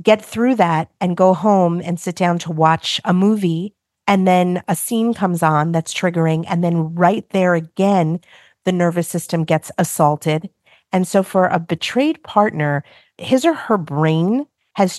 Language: English